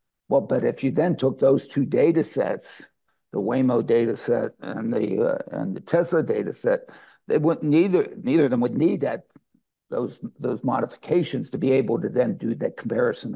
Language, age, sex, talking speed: English, 60-79, male, 190 wpm